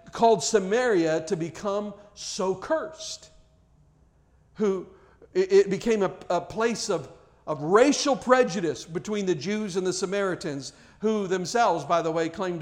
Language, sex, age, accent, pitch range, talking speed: English, male, 50-69, American, 185-230 Hz, 135 wpm